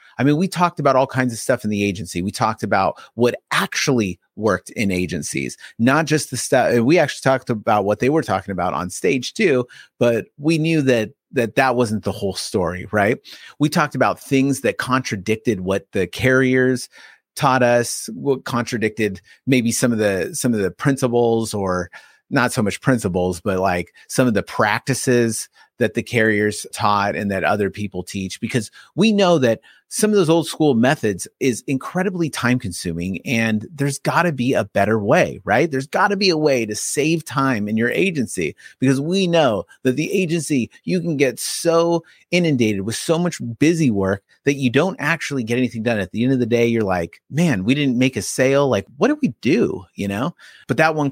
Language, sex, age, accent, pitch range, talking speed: English, male, 30-49, American, 105-145 Hz, 195 wpm